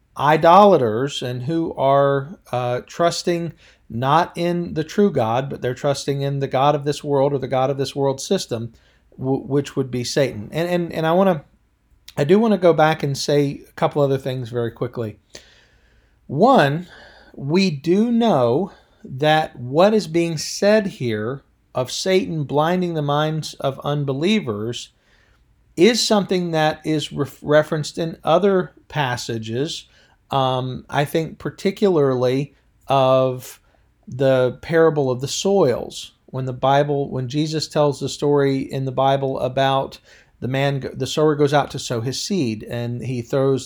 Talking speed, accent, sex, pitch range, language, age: 155 wpm, American, male, 125-155 Hz, English, 40-59